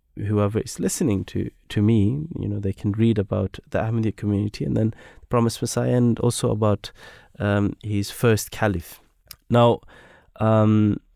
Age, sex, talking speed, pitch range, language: 20-39, male, 155 wpm, 100-110 Hz, English